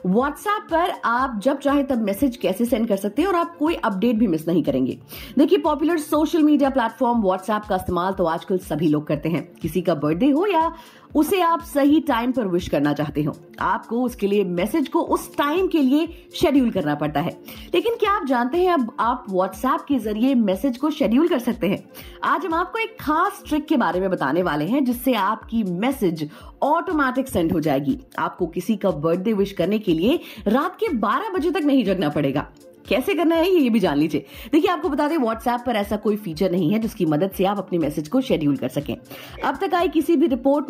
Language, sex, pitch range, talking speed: Hindi, female, 180-300 Hz, 210 wpm